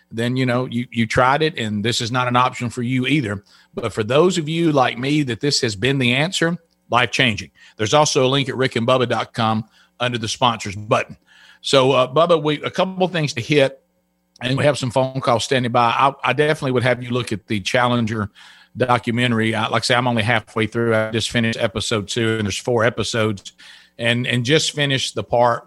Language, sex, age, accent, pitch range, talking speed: English, male, 50-69, American, 120-140 Hz, 215 wpm